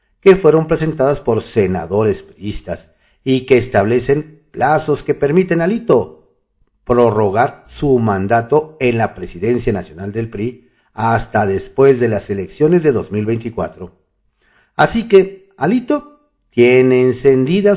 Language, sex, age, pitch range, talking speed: Spanish, male, 50-69, 110-165 Hz, 120 wpm